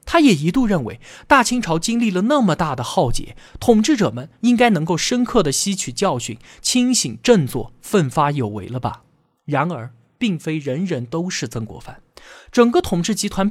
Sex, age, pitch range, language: male, 20-39, 145-225 Hz, Chinese